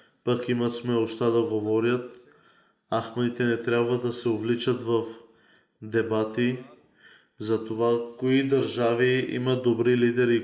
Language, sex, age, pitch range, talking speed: Bulgarian, male, 20-39, 115-125 Hz, 115 wpm